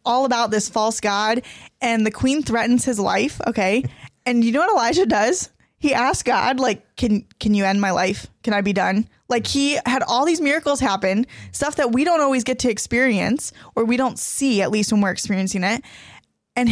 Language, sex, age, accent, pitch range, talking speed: English, female, 10-29, American, 210-255 Hz, 210 wpm